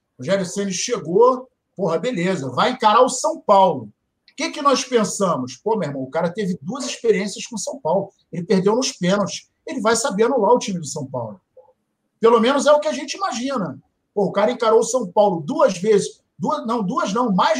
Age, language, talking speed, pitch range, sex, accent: 50-69, Portuguese, 210 wpm, 205-295 Hz, male, Brazilian